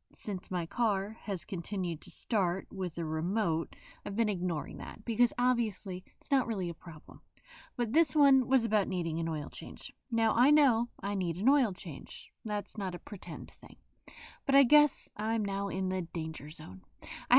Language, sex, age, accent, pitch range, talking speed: English, female, 30-49, American, 180-250 Hz, 185 wpm